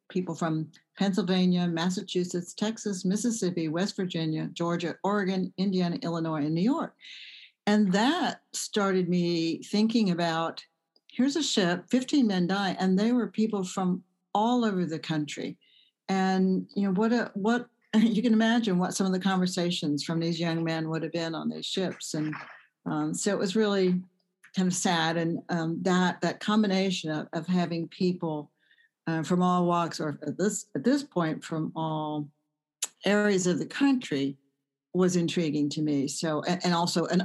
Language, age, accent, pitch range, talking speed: English, 60-79, American, 155-195 Hz, 165 wpm